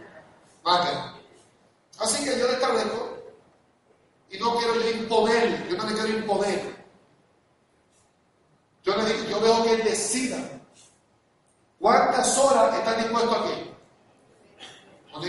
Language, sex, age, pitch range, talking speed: Spanish, male, 40-59, 195-245 Hz, 115 wpm